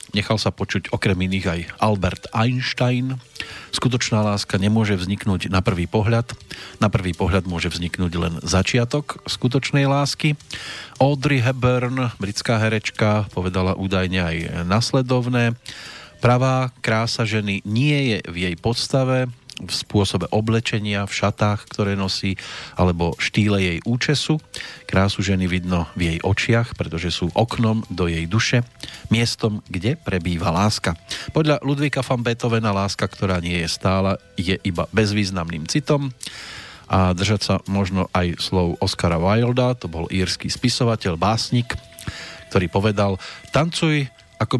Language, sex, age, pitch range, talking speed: Slovak, male, 40-59, 95-120 Hz, 130 wpm